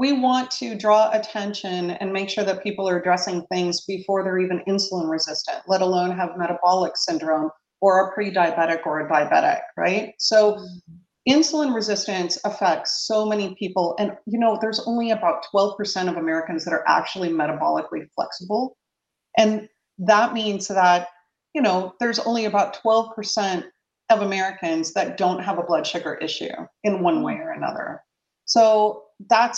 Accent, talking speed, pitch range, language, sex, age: American, 155 wpm, 175-220 Hz, English, female, 40-59